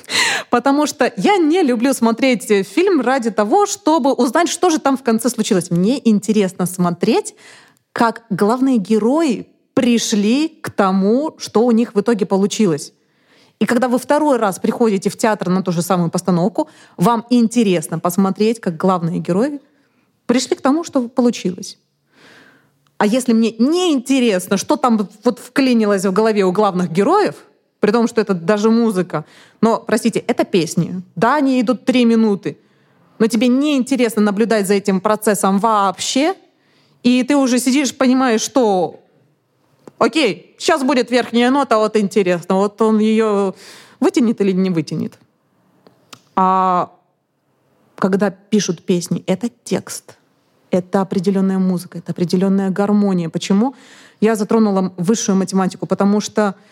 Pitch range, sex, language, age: 195-250 Hz, female, Russian, 20-39